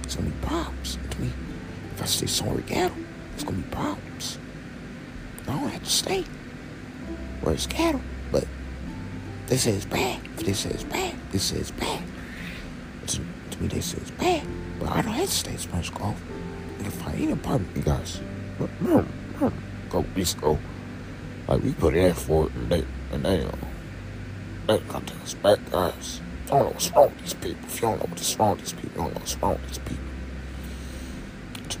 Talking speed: 215 wpm